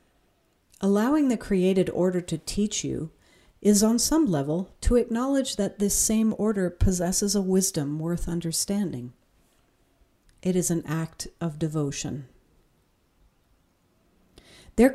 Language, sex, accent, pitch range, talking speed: English, female, American, 155-200 Hz, 115 wpm